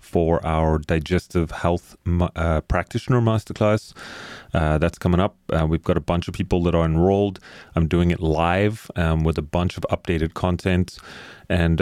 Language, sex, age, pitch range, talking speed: English, male, 30-49, 80-95 Hz, 170 wpm